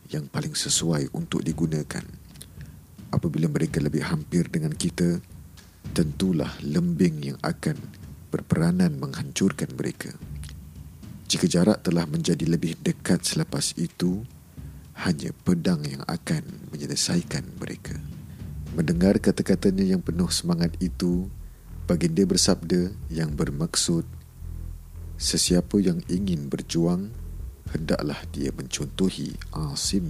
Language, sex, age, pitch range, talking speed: Malay, male, 50-69, 80-95 Hz, 100 wpm